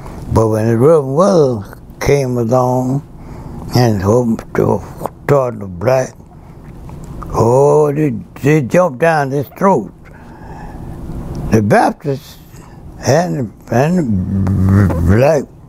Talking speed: 95 wpm